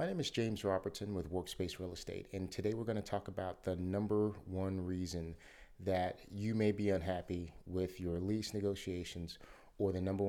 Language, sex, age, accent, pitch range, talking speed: English, male, 30-49, American, 90-100 Hz, 185 wpm